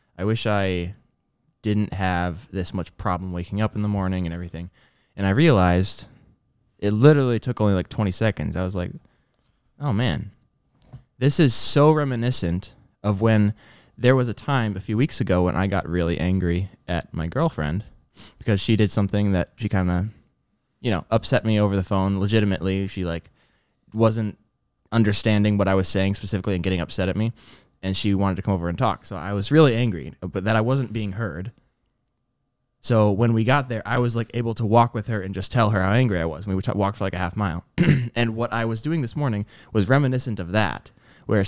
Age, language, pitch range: 20-39, English, 95-120 Hz